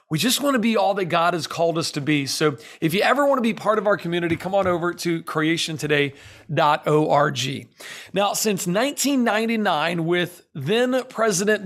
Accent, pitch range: American, 160-210 Hz